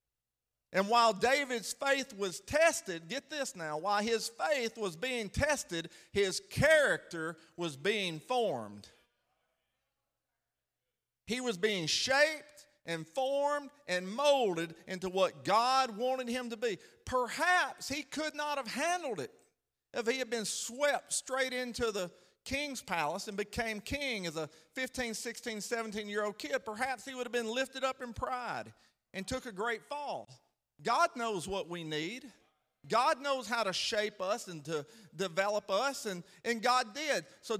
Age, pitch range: 50-69, 185-265 Hz